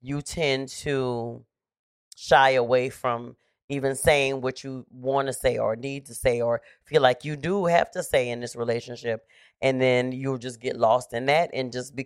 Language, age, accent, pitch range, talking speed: English, 30-49, American, 125-150 Hz, 195 wpm